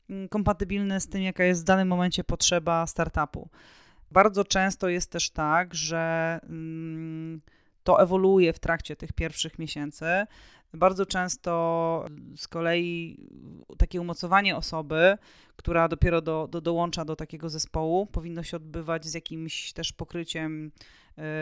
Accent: native